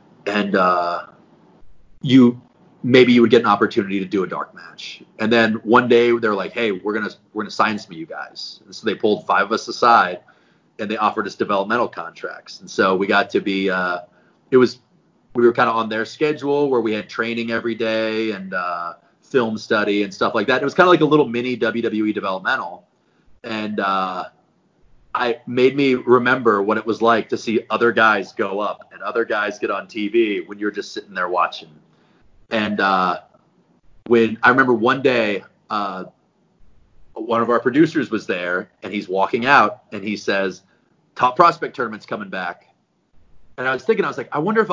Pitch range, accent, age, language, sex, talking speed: 105-130 Hz, American, 30-49, English, male, 200 wpm